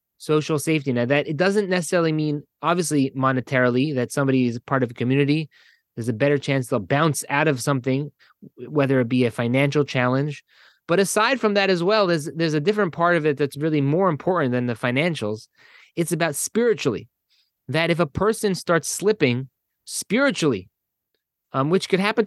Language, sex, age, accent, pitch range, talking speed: English, male, 20-39, American, 130-175 Hz, 180 wpm